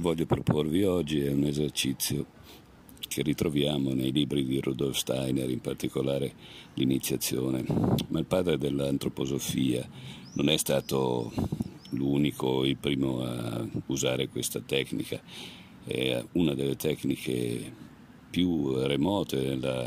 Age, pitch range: 50-69, 65-70 Hz